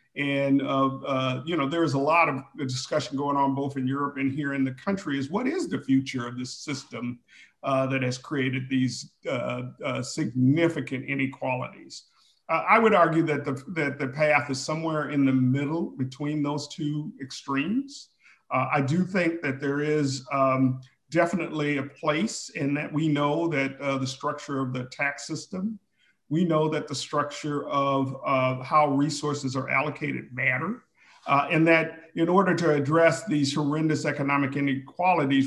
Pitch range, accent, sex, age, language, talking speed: 135-155 Hz, American, male, 50-69, English, 175 wpm